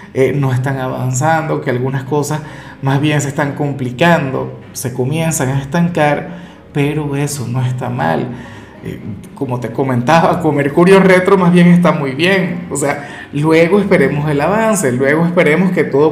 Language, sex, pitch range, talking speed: Spanish, male, 140-180 Hz, 160 wpm